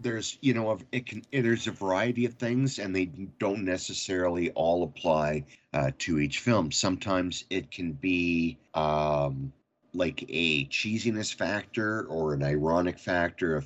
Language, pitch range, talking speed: English, 75-105 Hz, 150 wpm